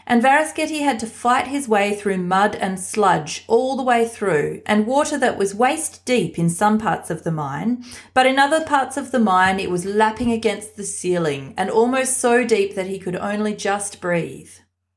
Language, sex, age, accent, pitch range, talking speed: English, female, 30-49, Australian, 175-250 Hz, 200 wpm